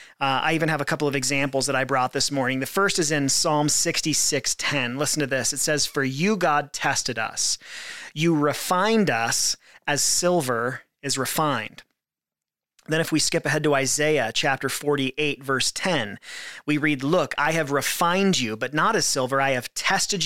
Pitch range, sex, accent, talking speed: 135-170 Hz, male, American, 185 wpm